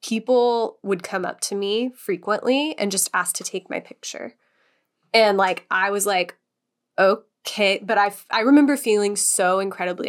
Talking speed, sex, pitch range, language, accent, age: 165 wpm, female, 185-230 Hz, English, American, 20-39